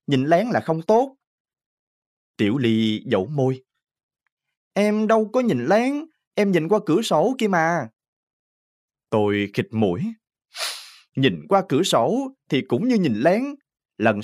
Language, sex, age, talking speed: Vietnamese, male, 20-39, 145 wpm